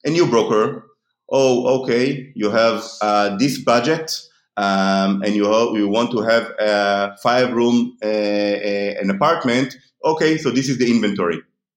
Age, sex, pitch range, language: 30-49, male, 105-140 Hz, English